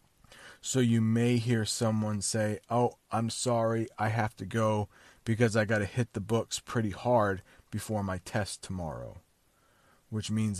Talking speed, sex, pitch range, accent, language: 160 wpm, male, 100-125 Hz, American, English